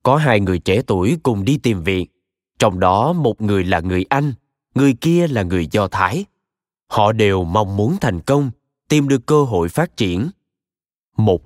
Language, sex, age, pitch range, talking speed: Vietnamese, male, 20-39, 105-140 Hz, 185 wpm